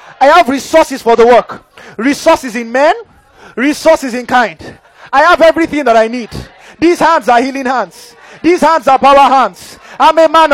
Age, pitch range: 20-39, 275-360 Hz